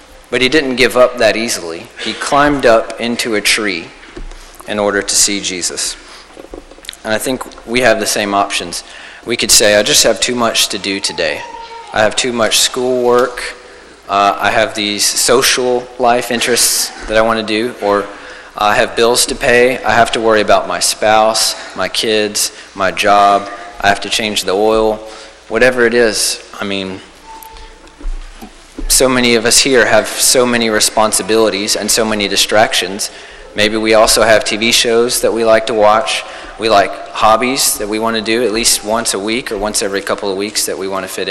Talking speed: 190 wpm